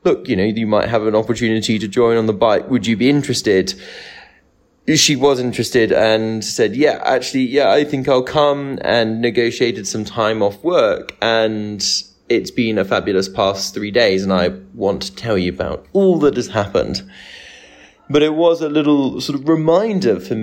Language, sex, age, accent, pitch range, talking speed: English, male, 20-39, British, 100-130 Hz, 185 wpm